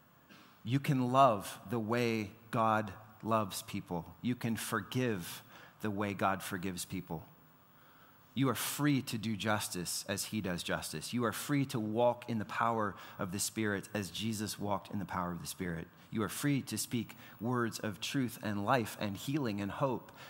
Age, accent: 30-49, American